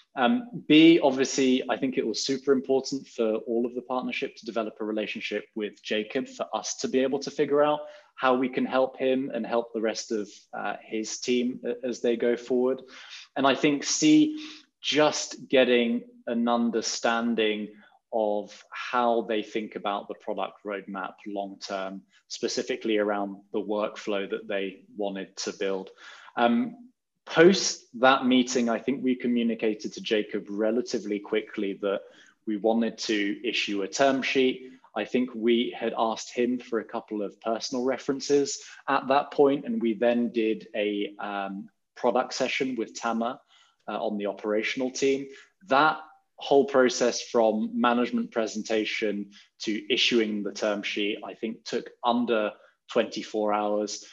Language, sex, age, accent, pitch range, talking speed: English, male, 20-39, British, 105-130 Hz, 150 wpm